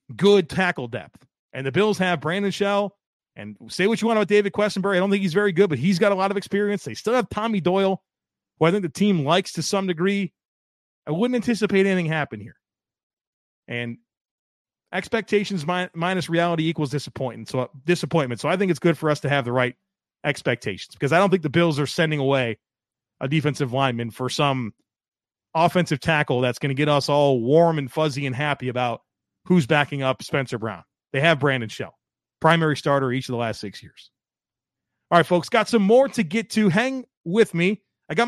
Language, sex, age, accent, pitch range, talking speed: English, male, 30-49, American, 130-195 Hz, 200 wpm